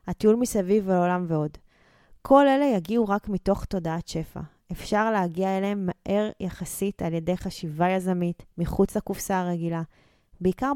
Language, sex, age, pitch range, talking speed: Hebrew, female, 20-39, 180-220 Hz, 135 wpm